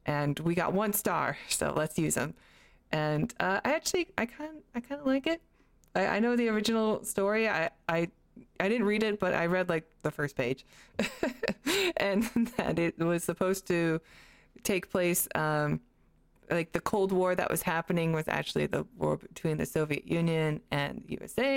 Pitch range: 155-205 Hz